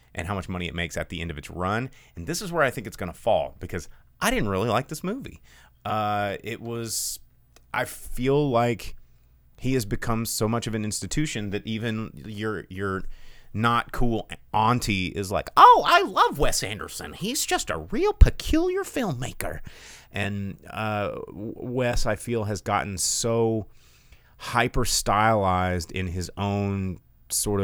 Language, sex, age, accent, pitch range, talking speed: English, male, 30-49, American, 90-125 Hz, 165 wpm